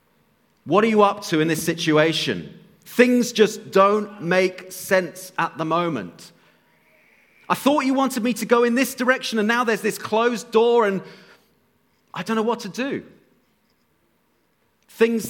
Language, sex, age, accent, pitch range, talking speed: English, male, 40-59, British, 165-215 Hz, 155 wpm